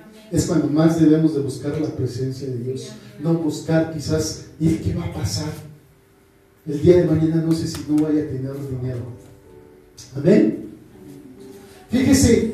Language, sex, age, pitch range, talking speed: Spanish, male, 40-59, 140-215 Hz, 160 wpm